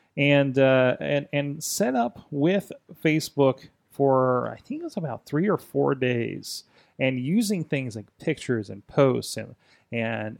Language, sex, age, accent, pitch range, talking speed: English, male, 30-49, American, 120-145 Hz, 155 wpm